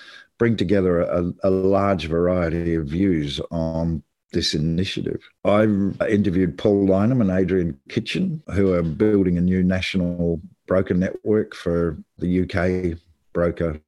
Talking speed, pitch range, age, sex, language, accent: 130 wpm, 90-105 Hz, 50-69, male, English, Australian